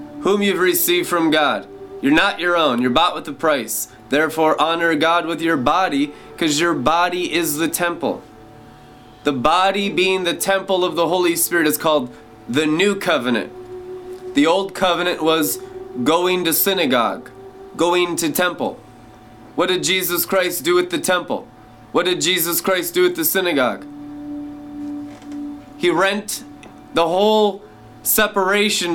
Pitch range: 155-205 Hz